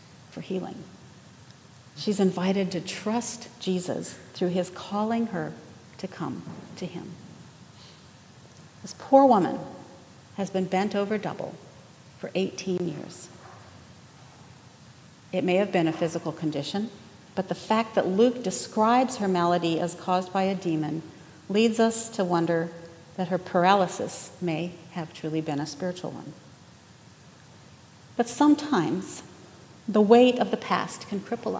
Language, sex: English, female